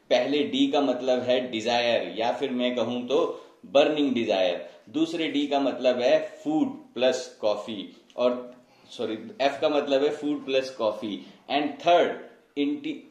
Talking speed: 150 wpm